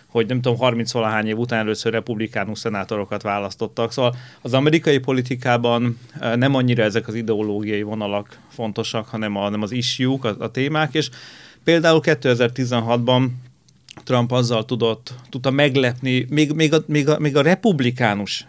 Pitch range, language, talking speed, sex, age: 115-135 Hz, Hungarian, 145 wpm, male, 30-49